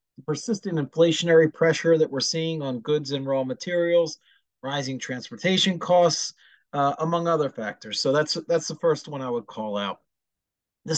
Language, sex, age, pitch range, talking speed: English, male, 30-49, 135-170 Hz, 160 wpm